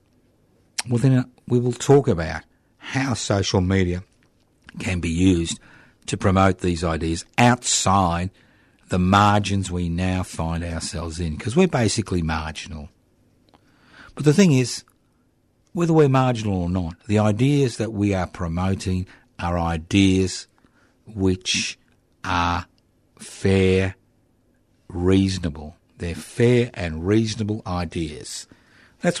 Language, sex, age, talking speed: English, male, 60-79, 115 wpm